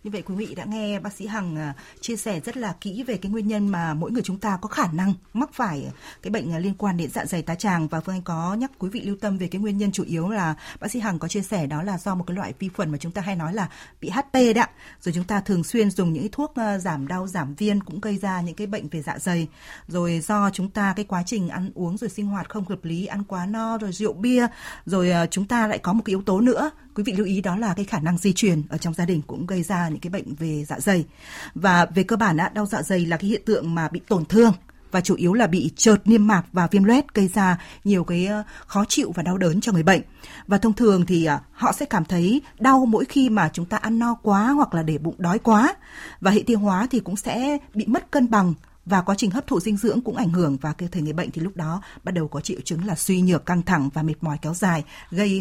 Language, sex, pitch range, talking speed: Vietnamese, female, 175-215 Hz, 280 wpm